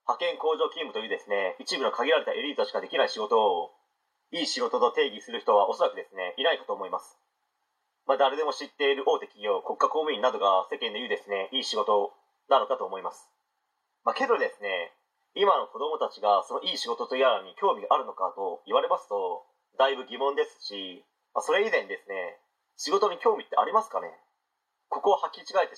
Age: 40-59